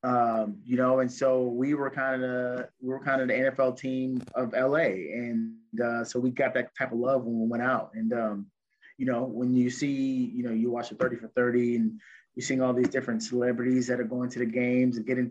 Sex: male